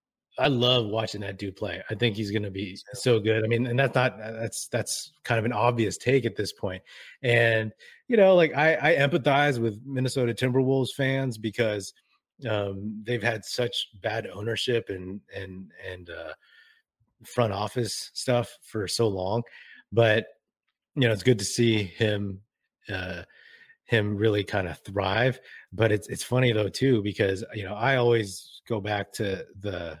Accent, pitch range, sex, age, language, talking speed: American, 100-120 Hz, male, 30-49, English, 170 wpm